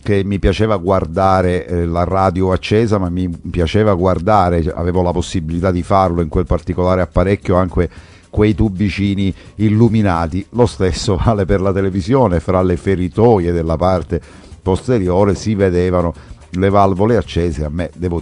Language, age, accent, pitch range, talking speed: Italian, 50-69, native, 90-115 Hz, 145 wpm